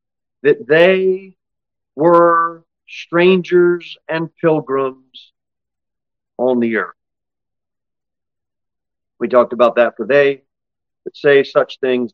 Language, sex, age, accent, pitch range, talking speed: English, male, 40-59, American, 110-150 Hz, 95 wpm